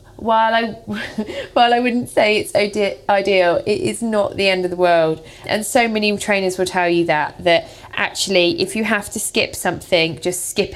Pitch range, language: 180-220 Hz, English